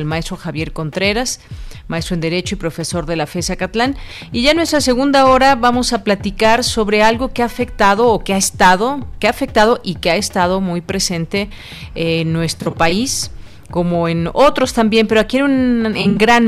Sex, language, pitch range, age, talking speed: female, Spanish, 180-220 Hz, 40-59, 195 wpm